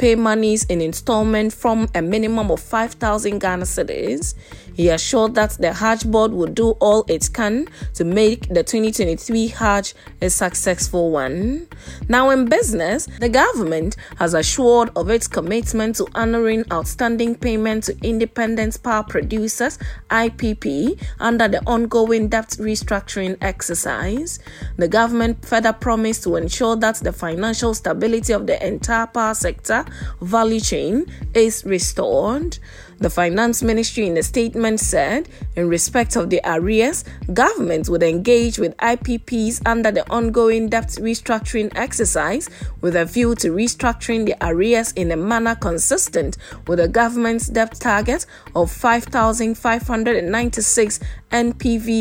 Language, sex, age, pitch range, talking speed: English, female, 30-49, 210-235 Hz, 135 wpm